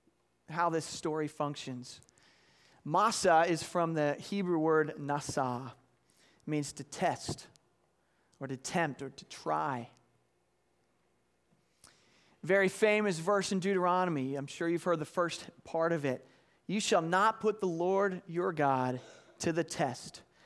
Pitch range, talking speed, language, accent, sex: 130-180 Hz, 135 wpm, English, American, male